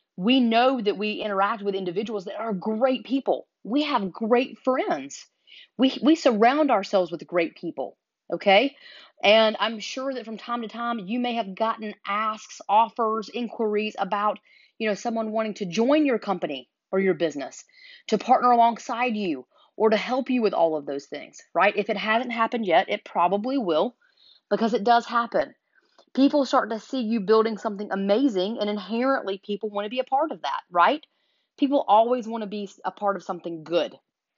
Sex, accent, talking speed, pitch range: female, American, 185 wpm, 200-245 Hz